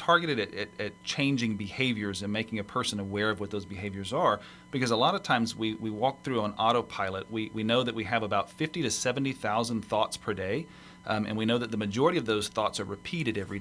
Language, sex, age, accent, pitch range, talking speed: English, male, 40-59, American, 105-120 Hz, 235 wpm